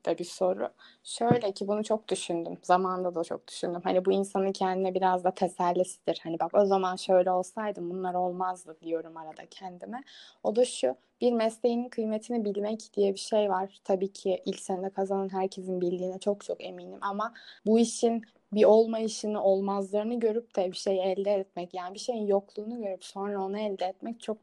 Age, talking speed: 20-39, 175 wpm